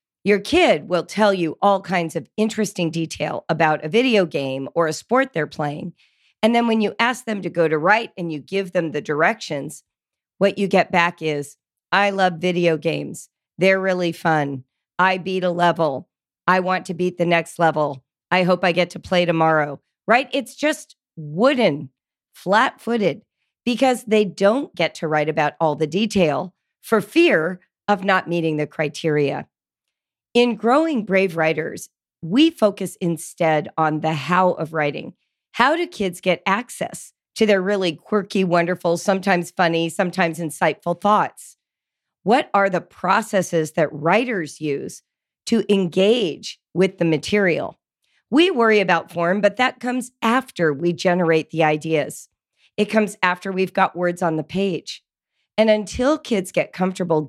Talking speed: 160 wpm